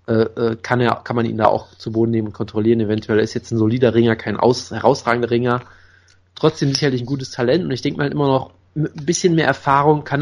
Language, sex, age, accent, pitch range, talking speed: German, male, 20-39, German, 110-130 Hz, 230 wpm